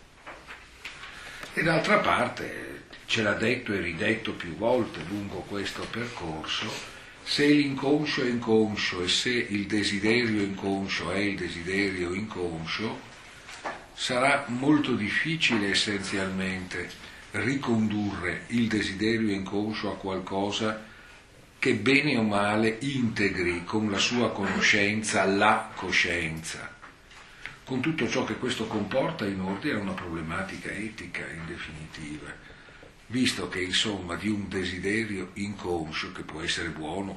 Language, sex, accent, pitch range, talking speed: Italian, male, native, 90-110 Hz, 115 wpm